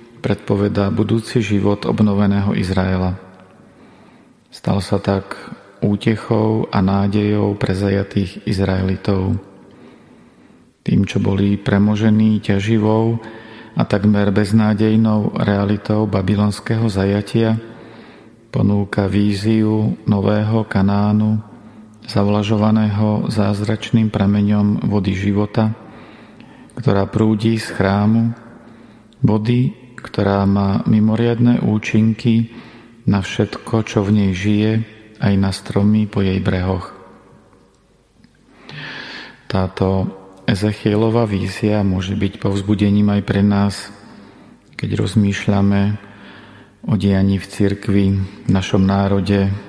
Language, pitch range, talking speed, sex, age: Slovak, 100-110 Hz, 90 wpm, male, 40-59